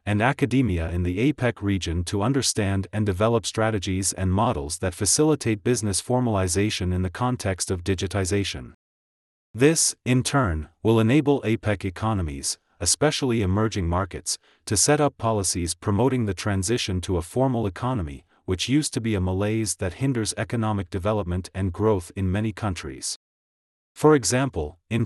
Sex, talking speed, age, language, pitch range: male, 145 wpm, 40-59, English, 95-120 Hz